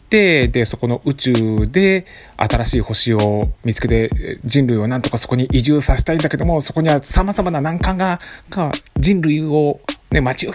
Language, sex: Japanese, male